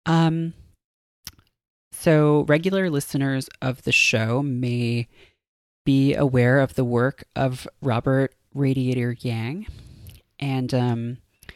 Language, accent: English, American